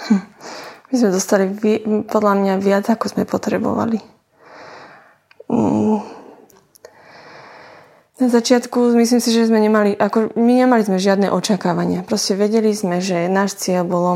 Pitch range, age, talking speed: 190-215 Hz, 20-39, 125 wpm